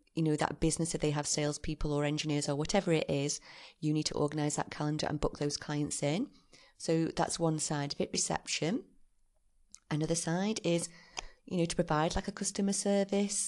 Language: English